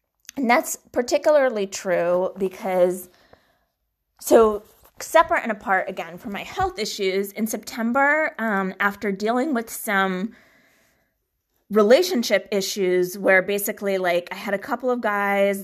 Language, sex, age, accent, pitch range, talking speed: English, female, 20-39, American, 180-230 Hz, 125 wpm